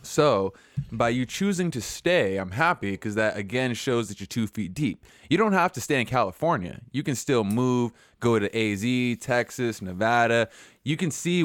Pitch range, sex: 105-130 Hz, male